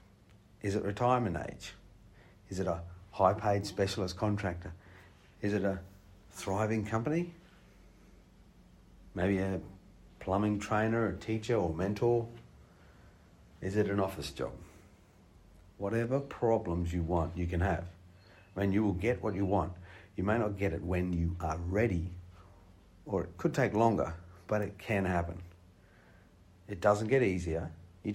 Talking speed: 140 wpm